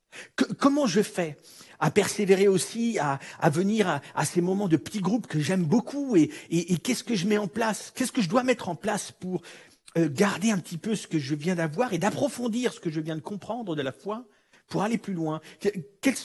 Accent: French